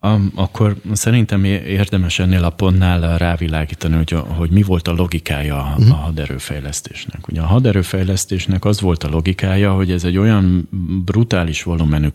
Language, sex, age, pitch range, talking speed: Hungarian, male, 30-49, 75-95 Hz, 140 wpm